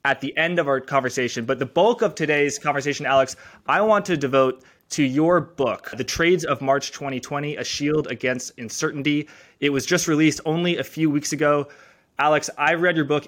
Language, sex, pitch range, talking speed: English, male, 135-165 Hz, 195 wpm